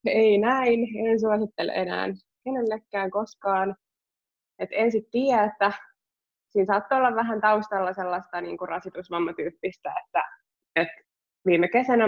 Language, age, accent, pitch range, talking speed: Finnish, 20-39, native, 180-220 Hz, 120 wpm